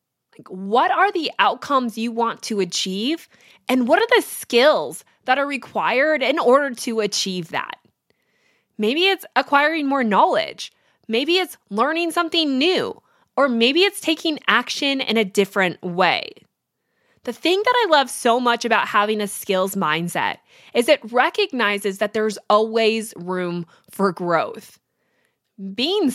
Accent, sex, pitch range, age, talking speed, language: American, female, 210-290 Hz, 20-39, 140 wpm, English